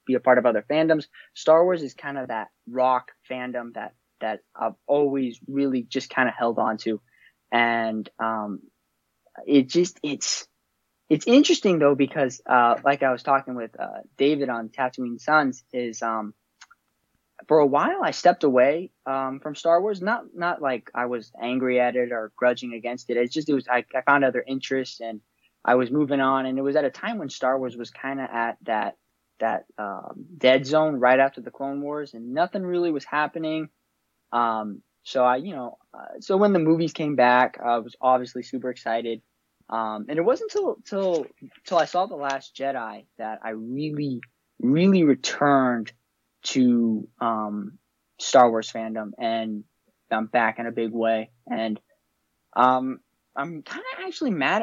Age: 20-39